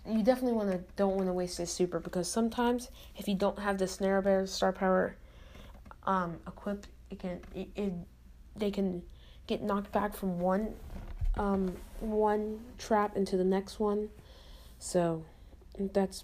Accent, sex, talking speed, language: American, female, 160 wpm, English